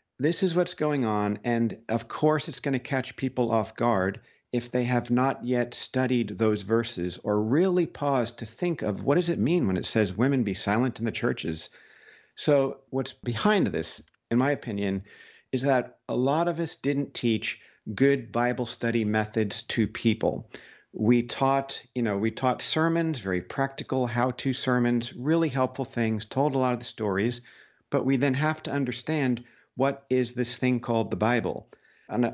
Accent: American